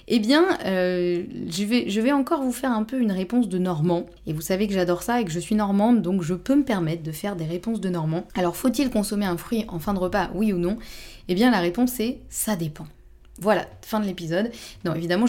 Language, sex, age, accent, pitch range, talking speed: French, female, 20-39, French, 175-230 Hz, 245 wpm